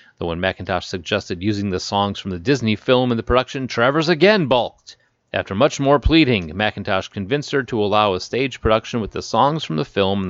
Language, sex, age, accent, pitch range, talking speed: English, male, 30-49, American, 95-125 Hz, 210 wpm